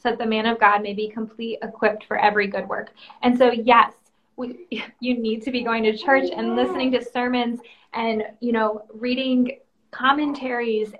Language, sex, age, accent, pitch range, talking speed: English, female, 20-39, American, 215-245 Hz, 185 wpm